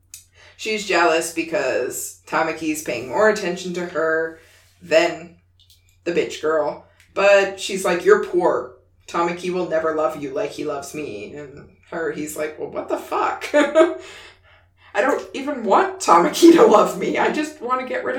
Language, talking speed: English, 160 wpm